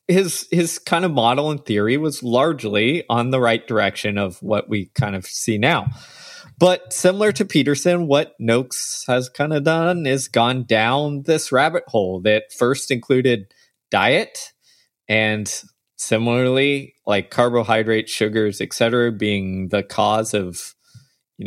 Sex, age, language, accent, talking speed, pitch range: male, 20-39, English, American, 145 wpm, 110-150 Hz